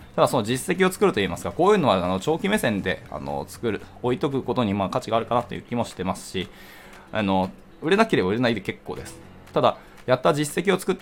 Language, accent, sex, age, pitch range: Japanese, native, male, 20-39, 95-140 Hz